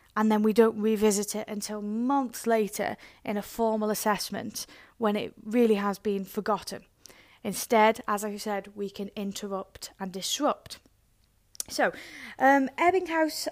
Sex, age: female, 30-49